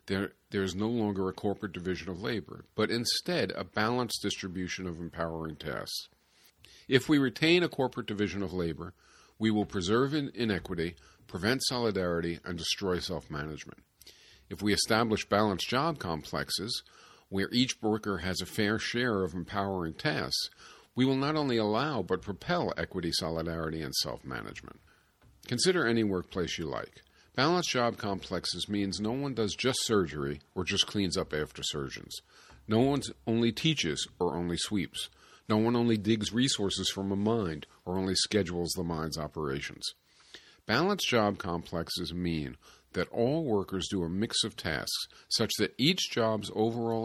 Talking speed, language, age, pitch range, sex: 155 wpm, English, 50-69, 85-115 Hz, male